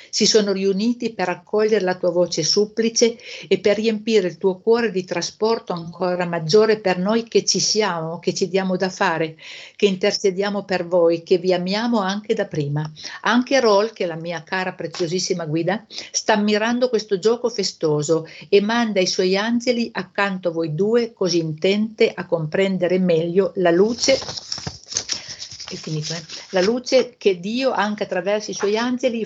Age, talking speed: 50-69, 160 wpm